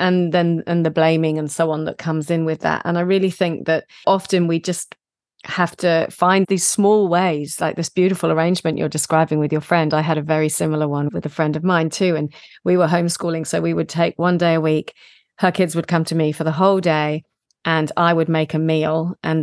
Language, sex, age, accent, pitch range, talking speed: English, female, 40-59, British, 160-185 Hz, 240 wpm